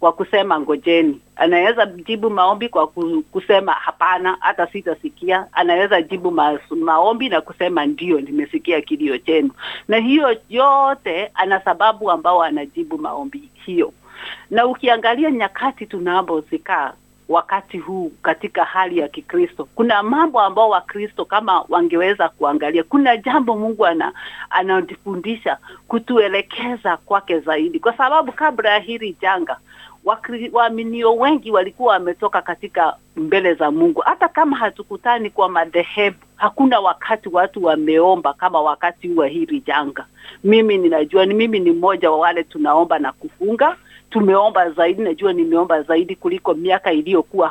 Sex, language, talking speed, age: female, Swahili, 135 wpm, 50-69